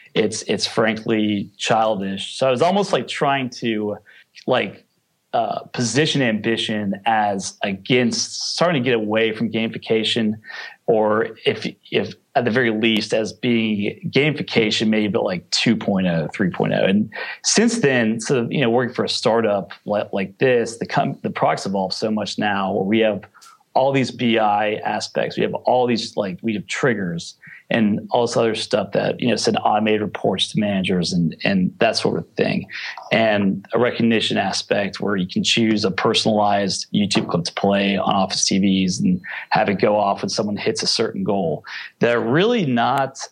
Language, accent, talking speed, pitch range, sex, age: English, American, 170 wpm, 100-115 Hz, male, 30-49